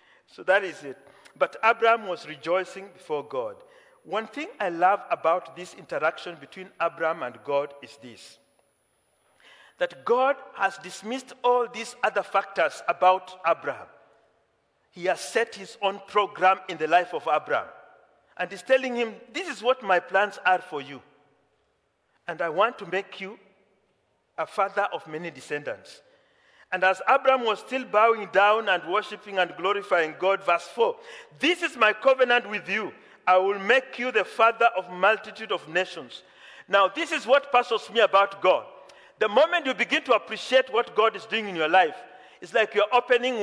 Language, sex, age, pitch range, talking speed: English, male, 50-69, 185-260 Hz, 170 wpm